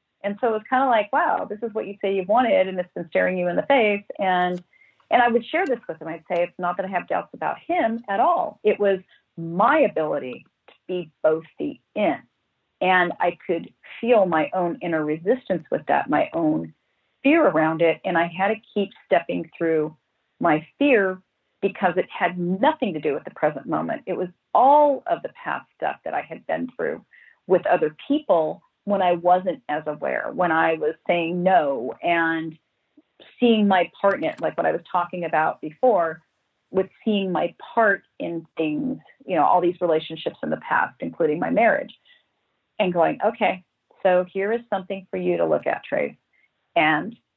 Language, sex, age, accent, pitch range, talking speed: English, female, 40-59, American, 170-235 Hz, 195 wpm